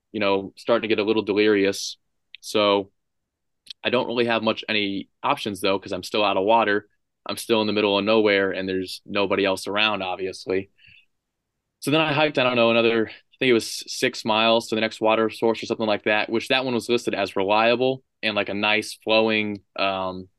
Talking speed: 210 wpm